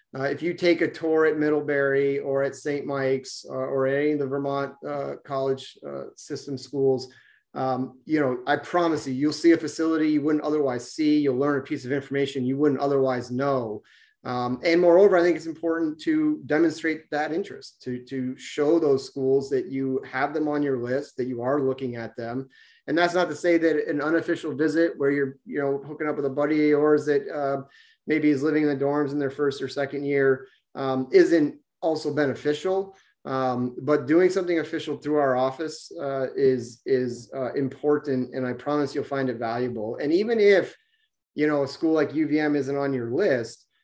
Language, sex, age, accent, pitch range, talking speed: English, male, 30-49, American, 130-155 Hz, 200 wpm